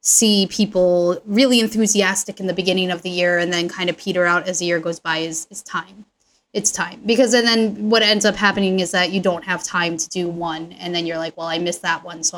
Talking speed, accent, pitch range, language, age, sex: 250 wpm, American, 175-215 Hz, English, 20-39, female